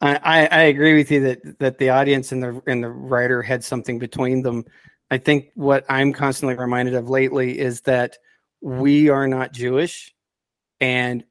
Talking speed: 175 wpm